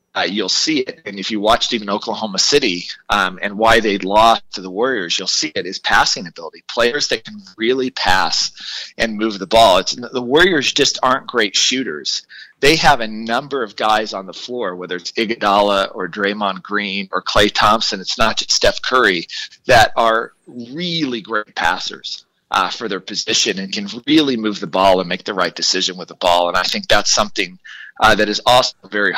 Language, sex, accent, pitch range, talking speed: English, male, American, 100-125 Hz, 200 wpm